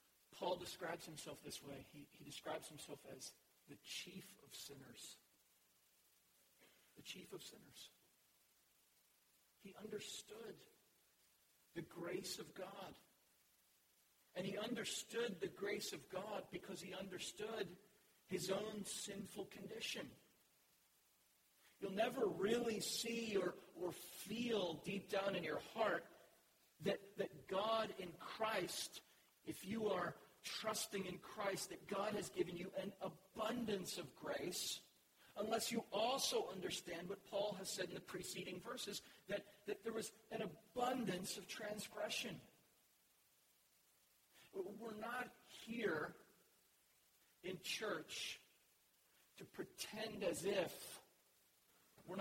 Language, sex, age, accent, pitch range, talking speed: English, male, 50-69, American, 185-215 Hz, 115 wpm